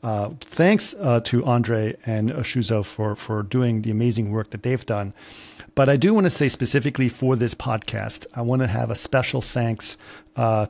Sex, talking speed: male, 195 wpm